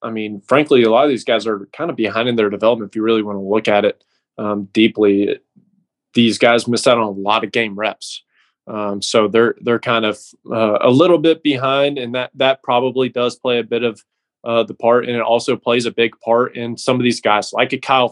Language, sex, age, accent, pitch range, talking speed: English, male, 20-39, American, 110-125 Hz, 240 wpm